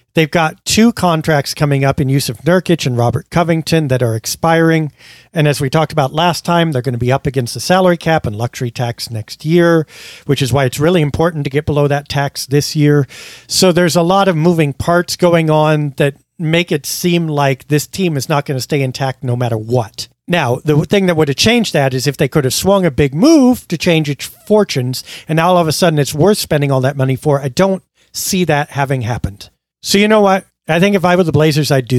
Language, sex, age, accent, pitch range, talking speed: English, male, 50-69, American, 130-165 Hz, 240 wpm